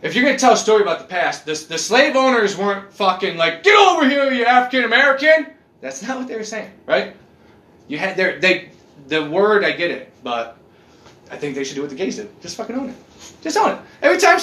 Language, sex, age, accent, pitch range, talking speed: English, male, 20-39, American, 220-325 Hz, 235 wpm